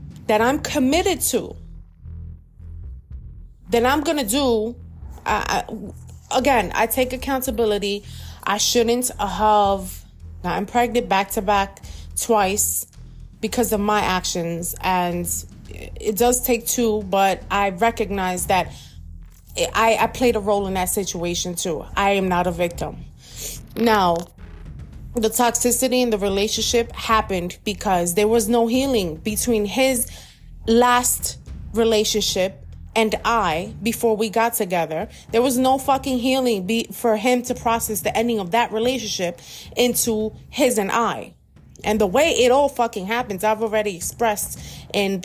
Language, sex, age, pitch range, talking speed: English, female, 30-49, 175-235 Hz, 135 wpm